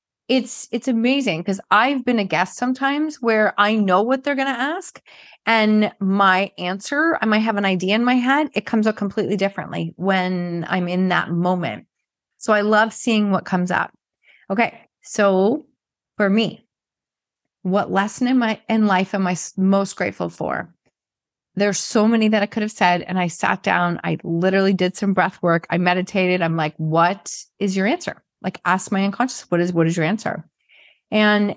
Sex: female